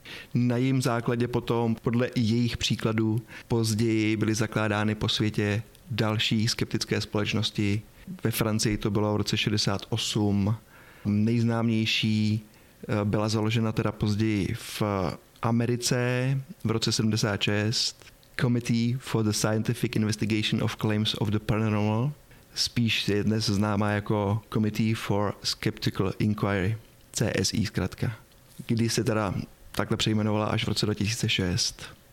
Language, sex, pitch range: Czech, male, 110-120 Hz